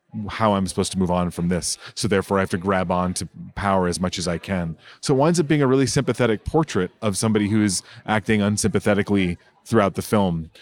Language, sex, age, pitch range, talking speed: English, male, 30-49, 95-120 Hz, 225 wpm